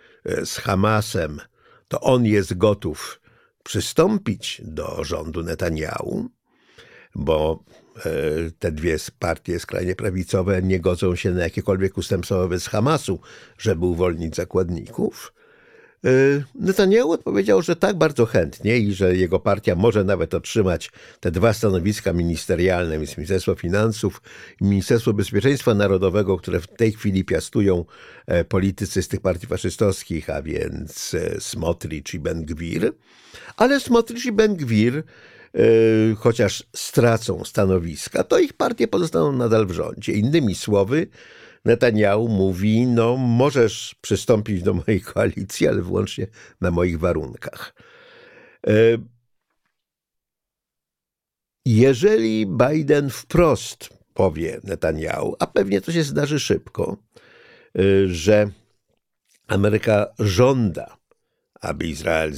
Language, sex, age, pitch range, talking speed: Polish, male, 50-69, 95-125 Hz, 105 wpm